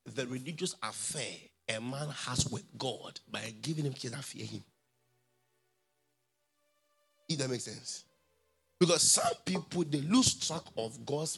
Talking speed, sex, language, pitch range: 140 wpm, male, English, 110-165 Hz